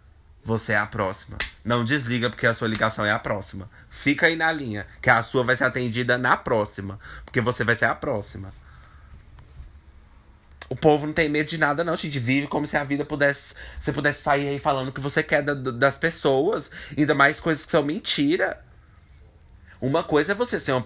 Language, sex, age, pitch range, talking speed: Portuguese, male, 20-39, 105-155 Hz, 200 wpm